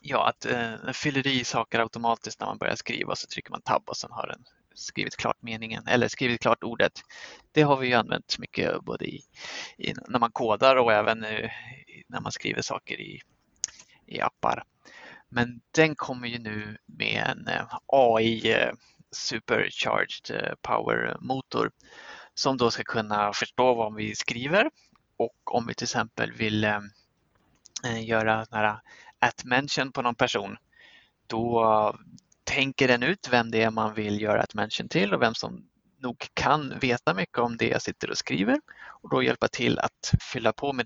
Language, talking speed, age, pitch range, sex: Swedish, 170 wpm, 20-39, 110-135 Hz, male